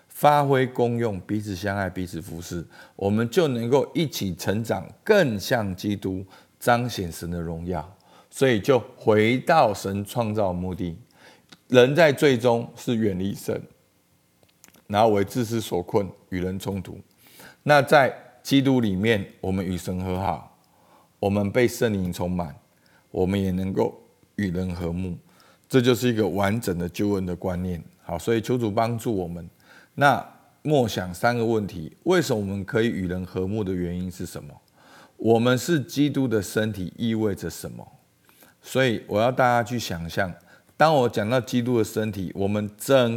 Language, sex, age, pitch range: Chinese, male, 50-69, 90-120 Hz